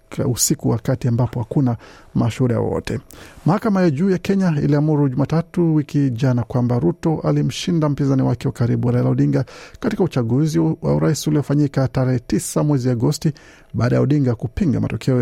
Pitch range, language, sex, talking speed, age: 120-155 Hz, Swahili, male, 160 wpm, 50-69